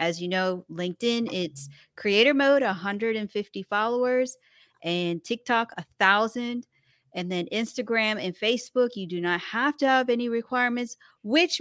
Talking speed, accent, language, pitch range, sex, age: 135 wpm, American, English, 175-235 Hz, female, 30-49